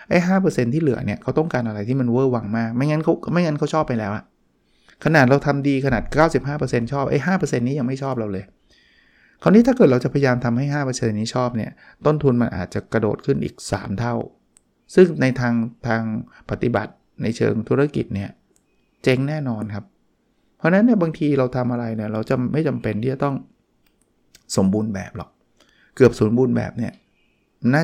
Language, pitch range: Thai, 115-145 Hz